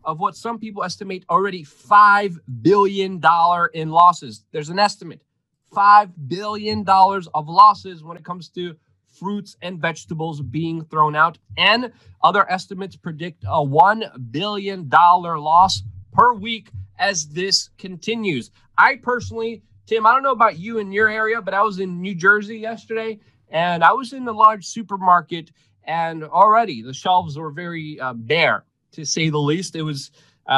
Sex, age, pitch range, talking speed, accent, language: male, 30-49, 140-205 Hz, 155 wpm, American, English